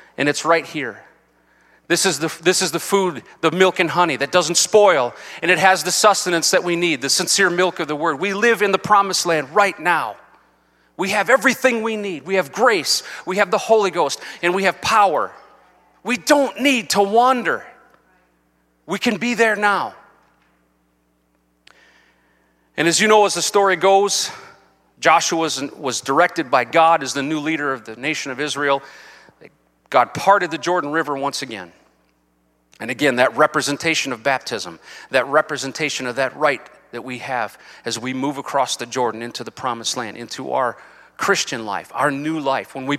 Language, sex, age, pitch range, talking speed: English, male, 40-59, 115-180 Hz, 180 wpm